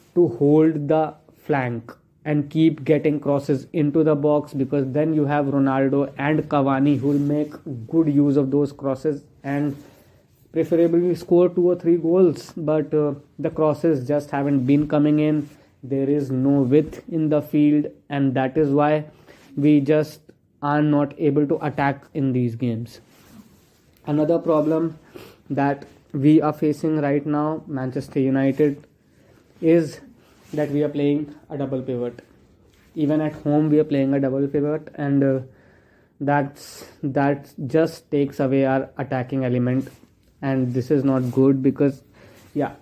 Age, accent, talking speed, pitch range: 20-39, Indian, 150 wpm, 135-155 Hz